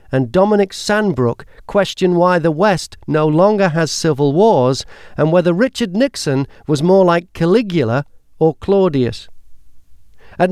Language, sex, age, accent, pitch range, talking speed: English, male, 50-69, British, 125-195 Hz, 130 wpm